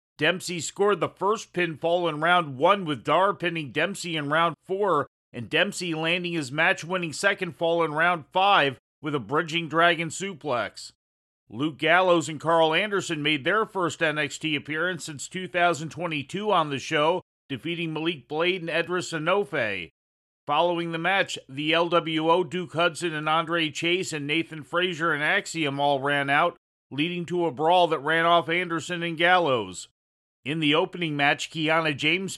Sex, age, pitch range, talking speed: male, 40-59, 145-170 Hz, 160 wpm